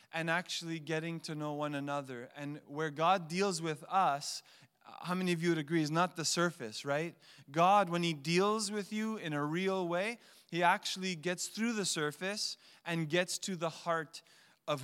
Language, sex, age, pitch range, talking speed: English, male, 30-49, 140-170 Hz, 185 wpm